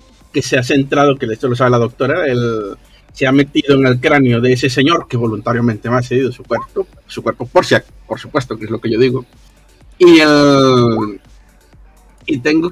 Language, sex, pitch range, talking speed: Spanish, male, 120-145 Hz, 210 wpm